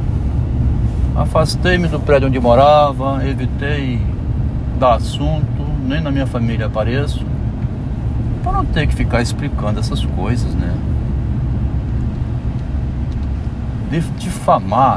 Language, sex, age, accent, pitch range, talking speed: Portuguese, male, 60-79, Brazilian, 110-125 Hz, 90 wpm